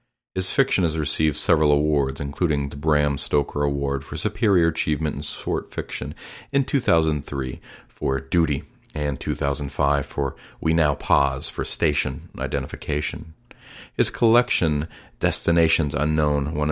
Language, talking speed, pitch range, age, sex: English, 125 wpm, 70-80 Hz, 50-69, male